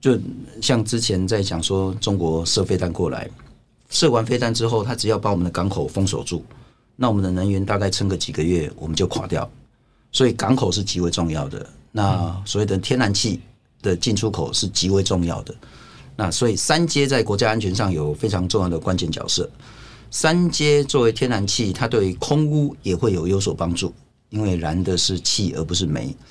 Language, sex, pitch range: Chinese, male, 90-120 Hz